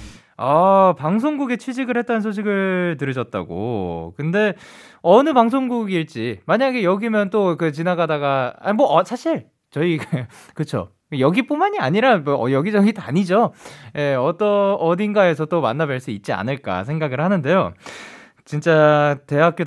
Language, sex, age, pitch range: Korean, male, 20-39, 120-200 Hz